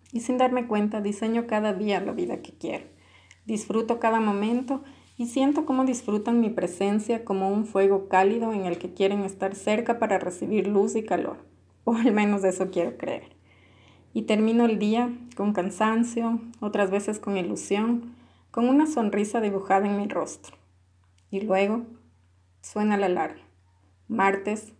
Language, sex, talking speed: Spanish, female, 155 wpm